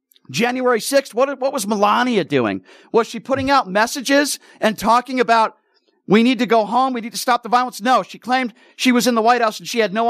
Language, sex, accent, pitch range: English, male, American, 200-250 Hz